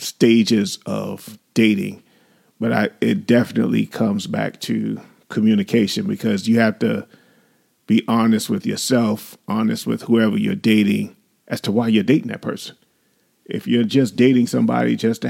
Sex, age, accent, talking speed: male, 40-59, American, 150 wpm